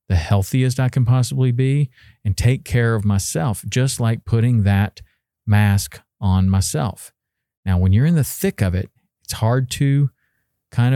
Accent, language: American, English